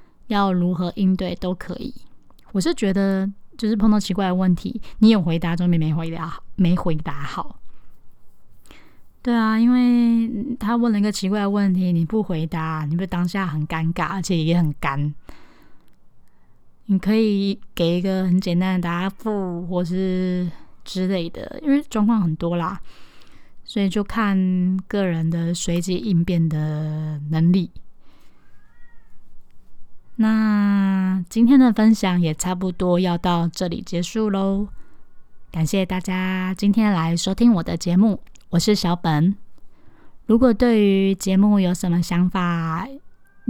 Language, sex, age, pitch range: Chinese, female, 20-39, 175-205 Hz